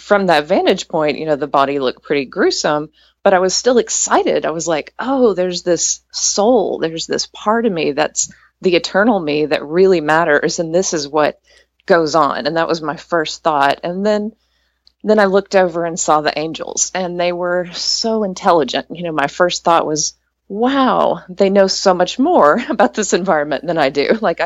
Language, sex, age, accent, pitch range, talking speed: English, female, 30-49, American, 155-195 Hz, 200 wpm